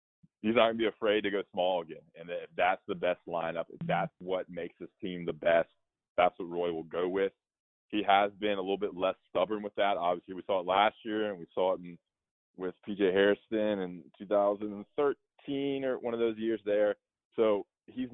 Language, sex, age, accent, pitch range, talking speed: English, male, 20-39, American, 95-110 Hz, 210 wpm